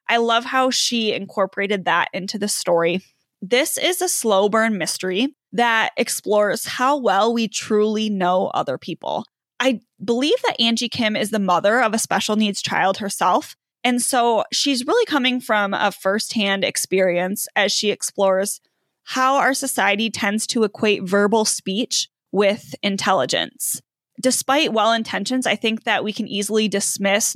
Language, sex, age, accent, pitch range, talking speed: English, female, 20-39, American, 200-245 Hz, 155 wpm